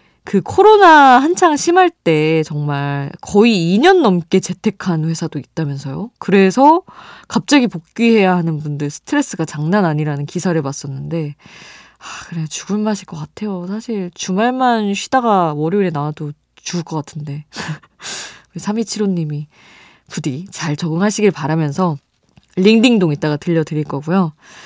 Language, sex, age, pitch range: Korean, female, 20-39, 155-220 Hz